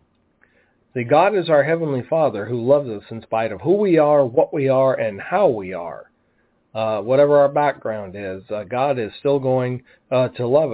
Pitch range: 130-165 Hz